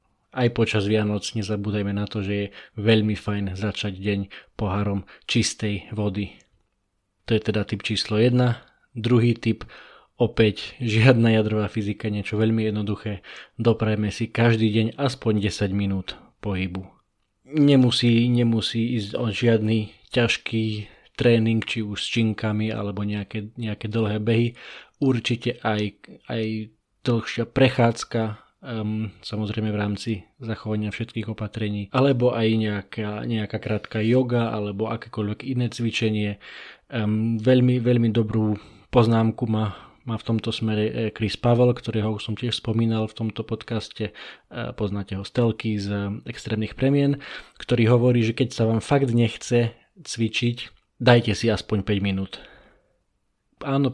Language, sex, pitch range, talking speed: Slovak, male, 105-120 Hz, 130 wpm